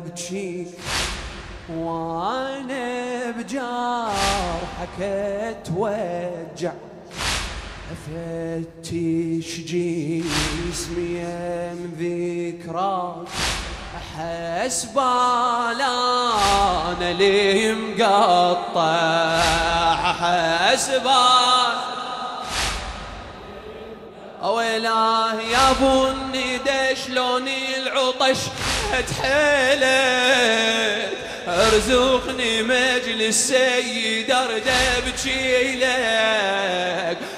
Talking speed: 40 wpm